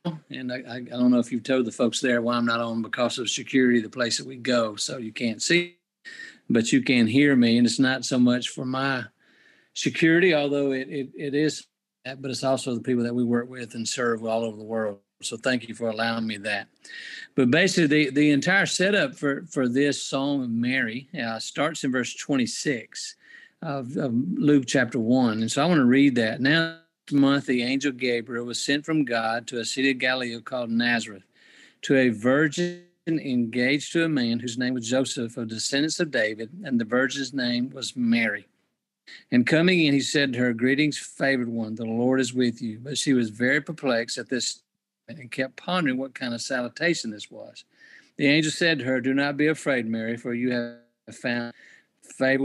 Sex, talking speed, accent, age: male, 205 wpm, American, 50-69